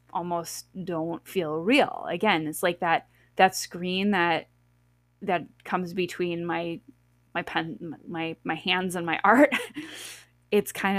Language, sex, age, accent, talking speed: English, female, 20-39, American, 135 wpm